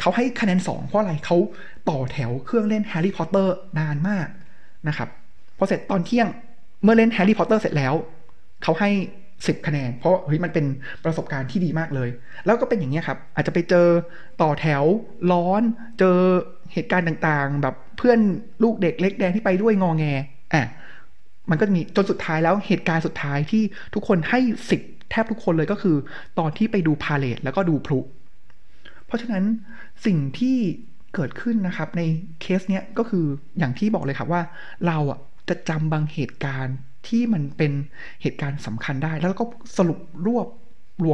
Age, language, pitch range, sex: 20-39, Thai, 150-200 Hz, male